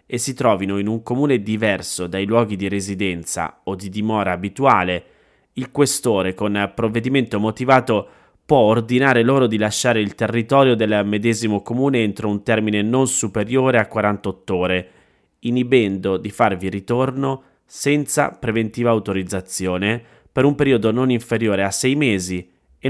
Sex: male